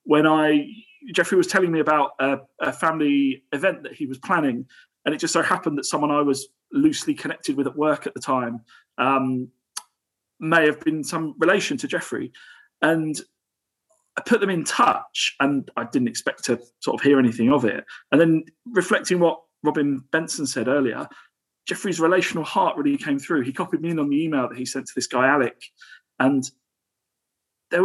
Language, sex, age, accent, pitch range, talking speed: English, male, 40-59, British, 135-180 Hz, 185 wpm